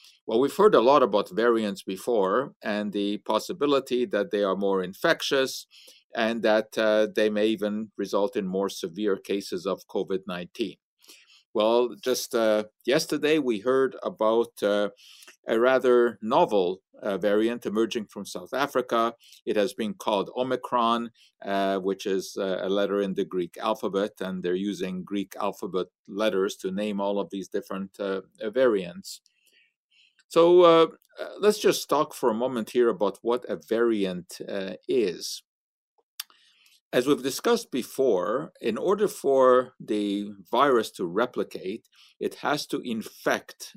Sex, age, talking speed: male, 50-69, 145 wpm